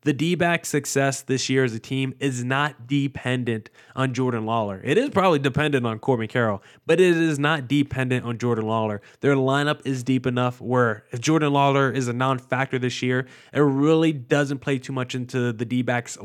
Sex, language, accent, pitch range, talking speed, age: male, English, American, 125-160 Hz, 190 wpm, 20-39